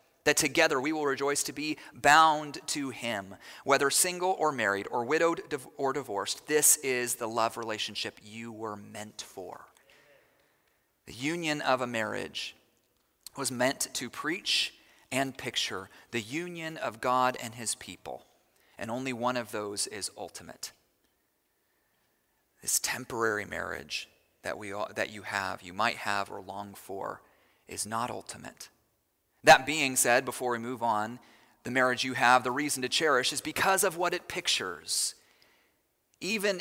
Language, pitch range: English, 115-150 Hz